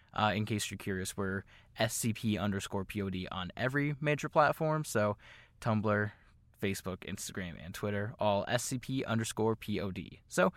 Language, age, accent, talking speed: English, 20-39, American, 135 wpm